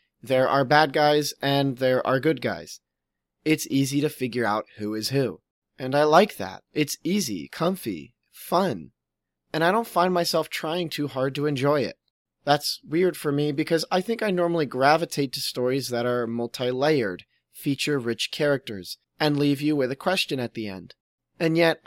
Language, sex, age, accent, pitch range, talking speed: English, male, 30-49, American, 125-165 Hz, 180 wpm